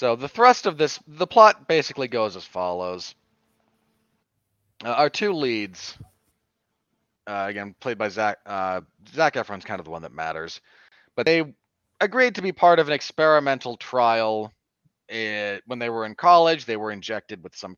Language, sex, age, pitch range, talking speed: English, male, 30-49, 105-145 Hz, 170 wpm